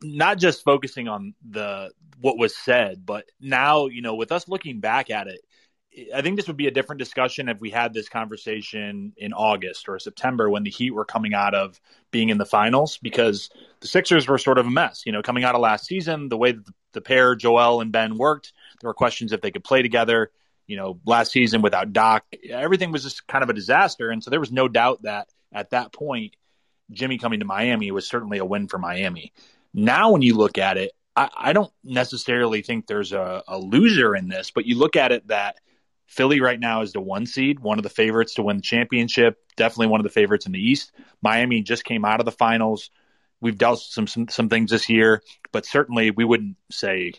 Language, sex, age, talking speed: English, male, 30-49, 225 wpm